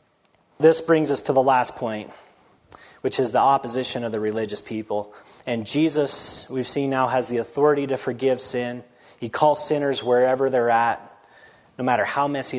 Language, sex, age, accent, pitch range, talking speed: English, male, 30-49, American, 110-135 Hz, 170 wpm